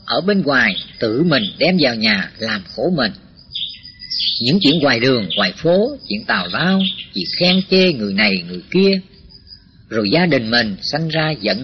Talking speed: 175 wpm